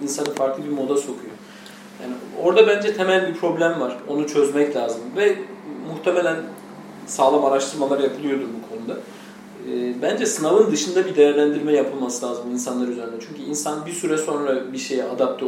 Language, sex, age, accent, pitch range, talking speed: Turkish, male, 40-59, native, 140-180 Hz, 155 wpm